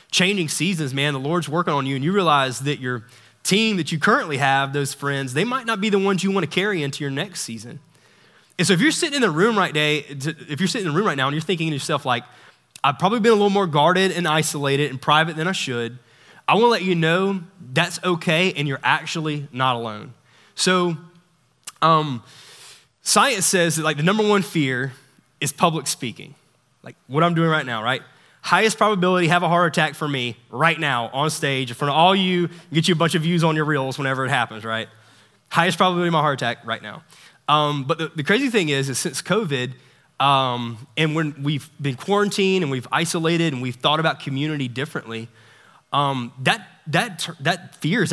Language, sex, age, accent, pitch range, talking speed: English, male, 20-39, American, 135-180 Hz, 215 wpm